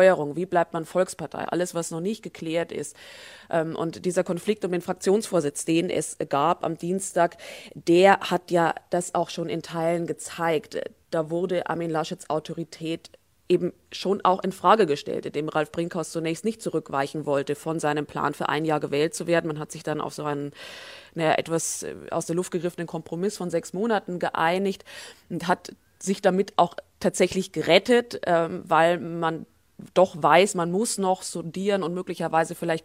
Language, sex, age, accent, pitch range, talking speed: German, female, 20-39, German, 155-180 Hz, 170 wpm